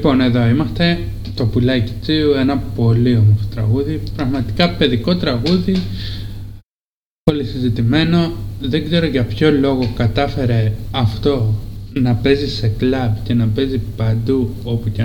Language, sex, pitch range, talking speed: Greek, male, 105-135 Hz, 130 wpm